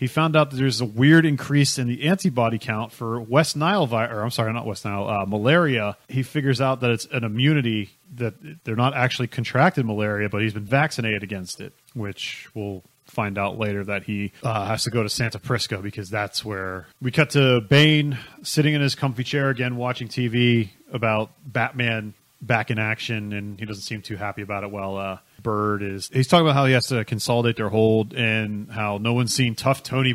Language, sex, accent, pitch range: English, male, American, 105-130 Hz